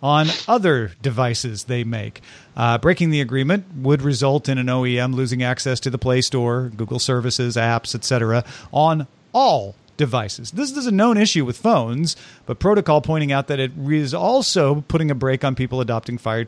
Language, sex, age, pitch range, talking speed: English, male, 40-59, 120-165 Hz, 180 wpm